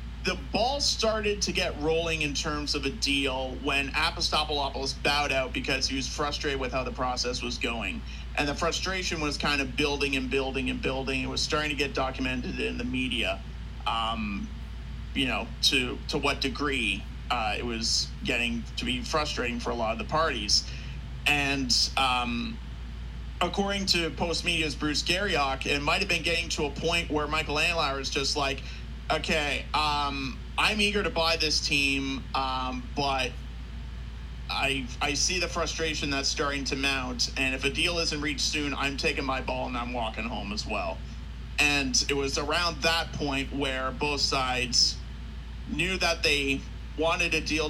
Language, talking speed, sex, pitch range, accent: English, 175 wpm, male, 125-155 Hz, American